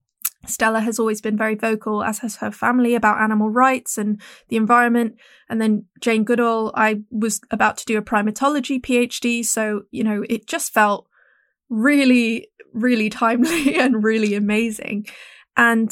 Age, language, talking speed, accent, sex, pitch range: 20-39, English, 155 wpm, British, female, 220-255 Hz